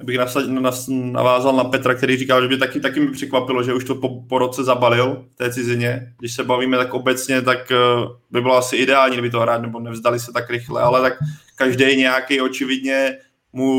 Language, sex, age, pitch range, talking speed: Czech, male, 20-39, 125-135 Hz, 195 wpm